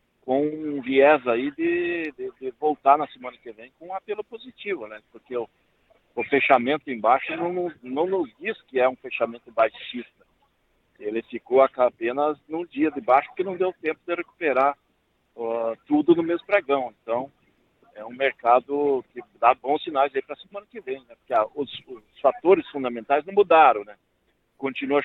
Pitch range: 120-170 Hz